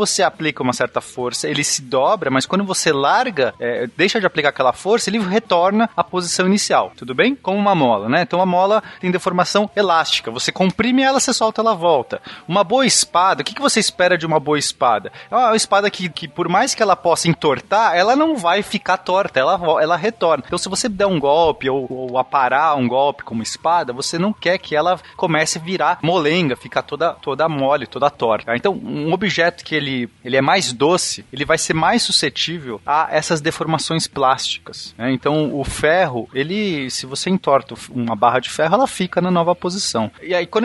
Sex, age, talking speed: male, 30-49, 205 wpm